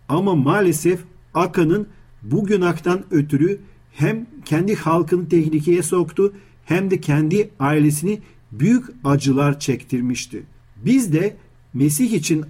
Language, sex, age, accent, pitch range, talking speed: Turkish, male, 50-69, native, 140-190 Hz, 105 wpm